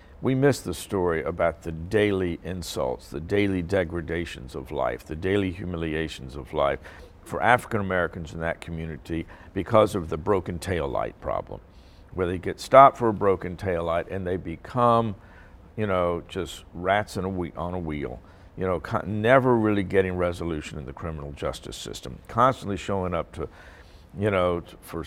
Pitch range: 85-115 Hz